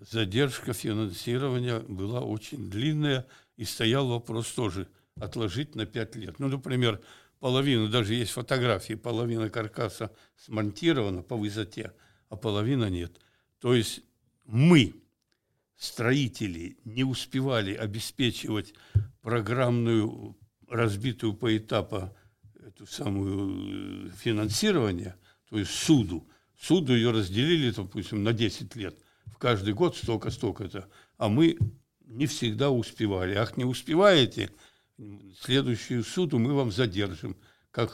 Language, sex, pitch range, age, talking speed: Russian, male, 105-125 Hz, 60-79, 110 wpm